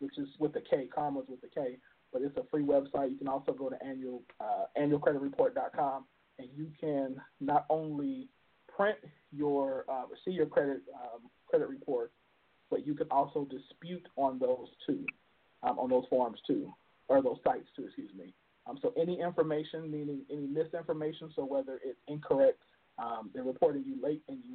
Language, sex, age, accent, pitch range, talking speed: English, male, 40-59, American, 140-160 Hz, 180 wpm